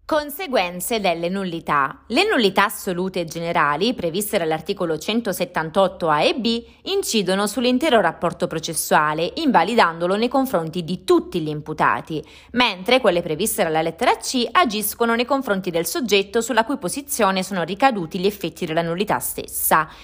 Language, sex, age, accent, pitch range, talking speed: Italian, female, 30-49, native, 170-230 Hz, 140 wpm